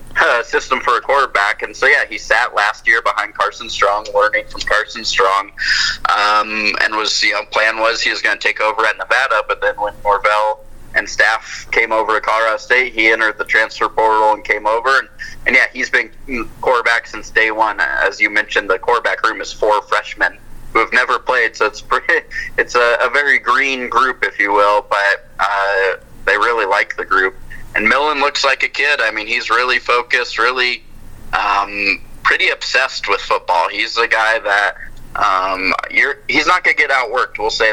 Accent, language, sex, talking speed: American, English, male, 195 wpm